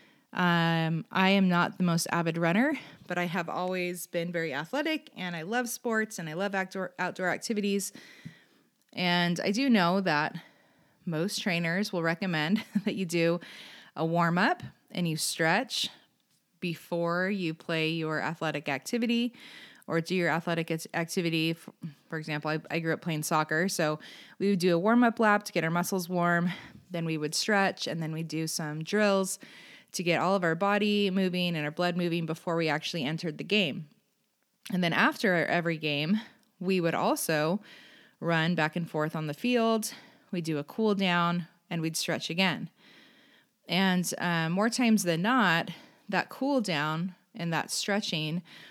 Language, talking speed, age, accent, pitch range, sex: English, 170 wpm, 20-39, American, 165-205 Hz, female